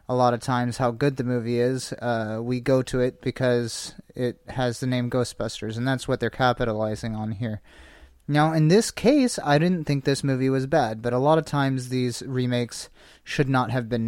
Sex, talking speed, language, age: male, 210 wpm, English, 30-49